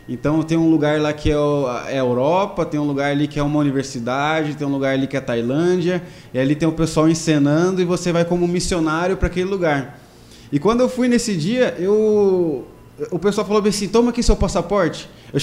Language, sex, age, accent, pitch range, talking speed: Portuguese, male, 20-39, Brazilian, 150-190 Hz, 225 wpm